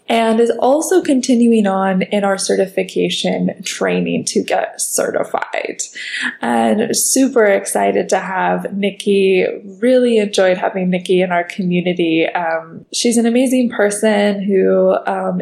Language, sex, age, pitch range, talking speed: English, female, 20-39, 180-220 Hz, 125 wpm